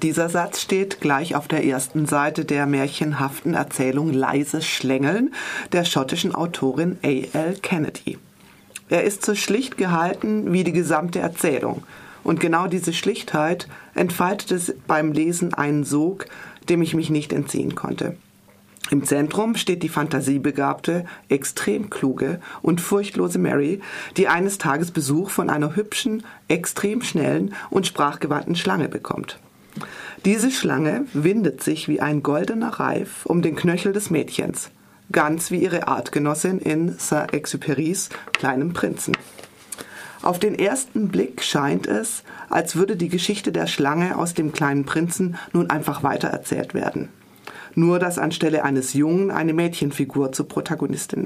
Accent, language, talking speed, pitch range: German, German, 135 wpm, 150-185 Hz